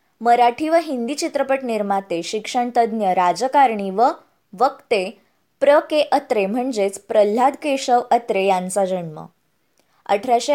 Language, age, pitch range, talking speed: Marathi, 20-39, 210-270 Hz, 115 wpm